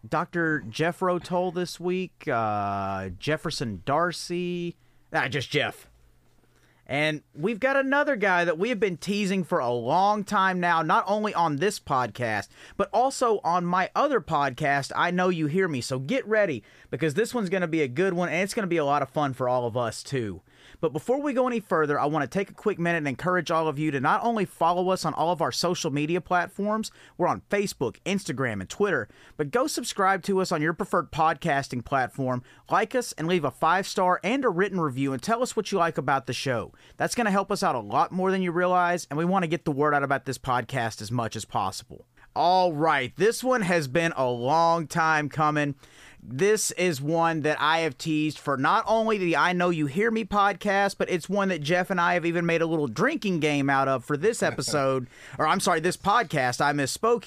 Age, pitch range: 40-59, 140-195 Hz